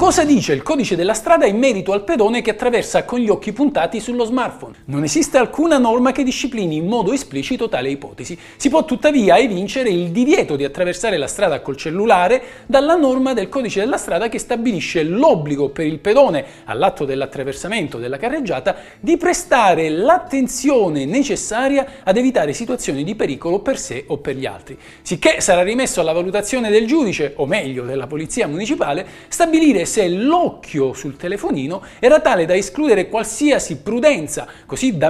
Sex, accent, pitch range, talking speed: male, native, 175-275 Hz, 165 wpm